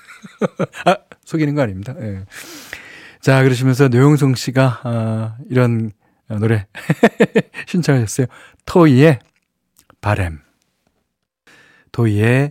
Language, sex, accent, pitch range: Korean, male, native, 105-150 Hz